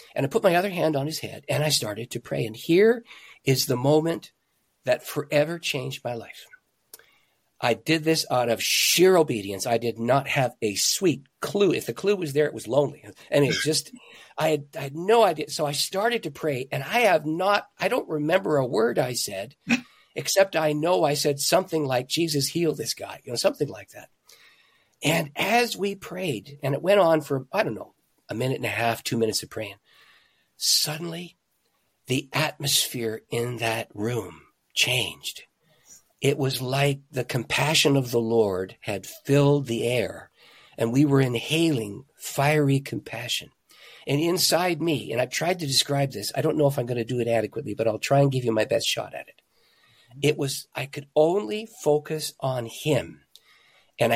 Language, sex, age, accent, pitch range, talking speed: English, male, 50-69, American, 120-160 Hz, 190 wpm